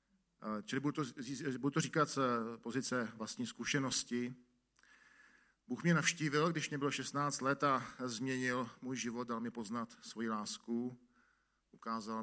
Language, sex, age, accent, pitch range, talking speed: Czech, male, 50-69, native, 115-140 Hz, 130 wpm